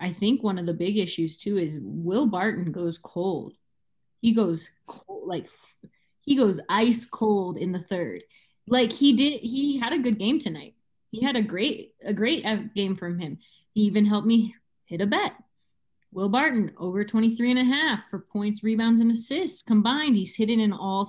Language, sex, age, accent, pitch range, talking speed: English, female, 20-39, American, 175-225 Hz, 190 wpm